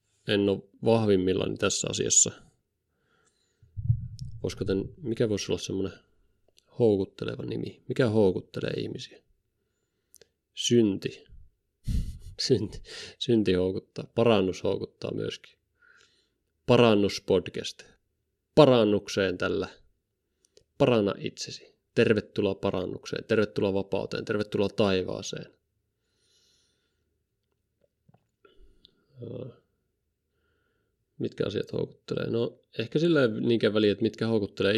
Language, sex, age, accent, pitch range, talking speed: Finnish, male, 30-49, native, 100-115 Hz, 80 wpm